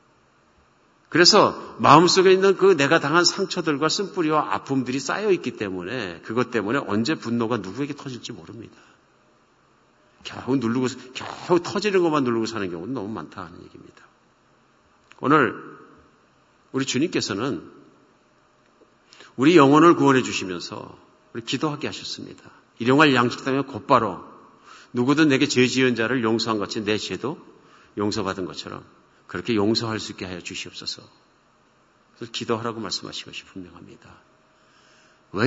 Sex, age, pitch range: male, 50-69, 110-150 Hz